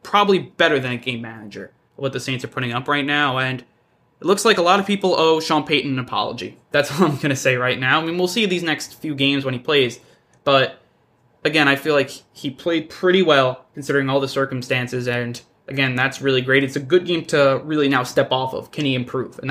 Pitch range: 130-160 Hz